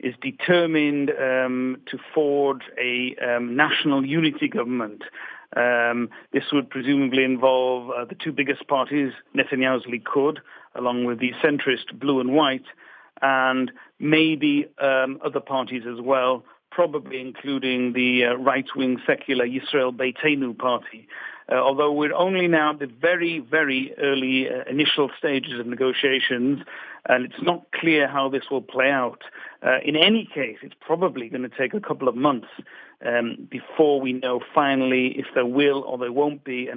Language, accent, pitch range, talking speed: English, British, 125-145 Hz, 155 wpm